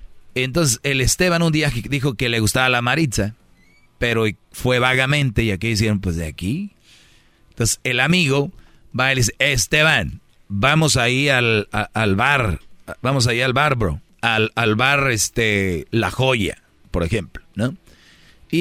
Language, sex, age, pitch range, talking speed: Spanish, male, 40-59, 110-140 Hz, 155 wpm